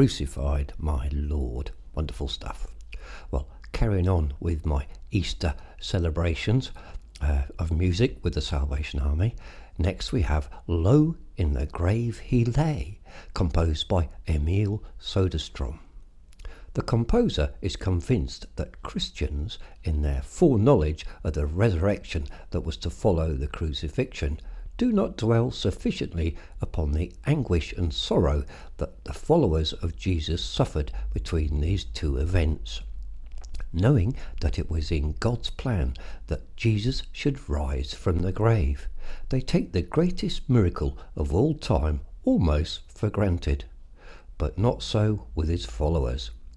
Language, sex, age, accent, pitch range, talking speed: English, male, 60-79, British, 75-100 Hz, 130 wpm